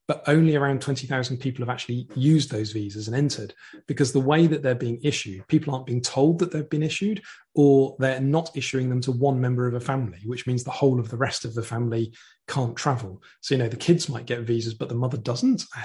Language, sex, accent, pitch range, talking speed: English, male, British, 120-140 Hz, 240 wpm